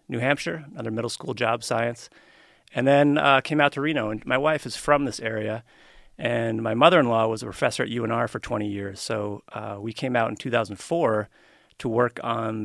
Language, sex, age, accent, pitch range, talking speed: English, male, 30-49, American, 110-130 Hz, 200 wpm